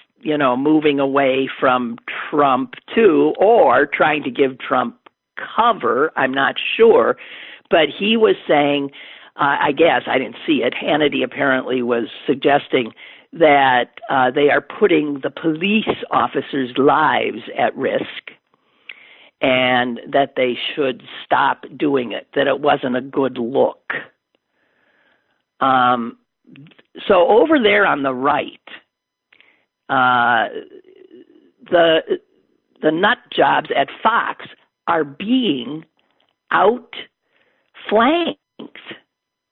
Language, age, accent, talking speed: English, 50-69, American, 110 wpm